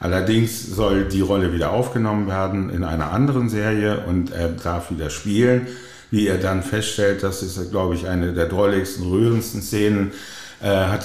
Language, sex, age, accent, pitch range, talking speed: German, male, 50-69, German, 85-105 Hz, 170 wpm